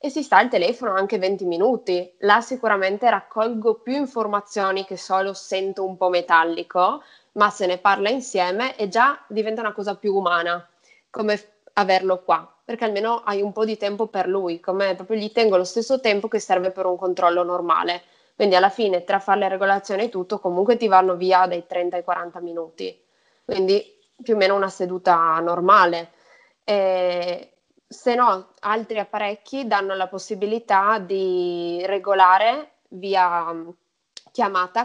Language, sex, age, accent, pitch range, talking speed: Italian, female, 20-39, native, 180-210 Hz, 160 wpm